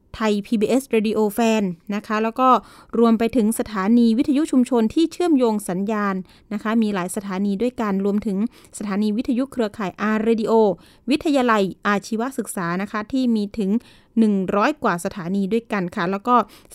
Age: 20-39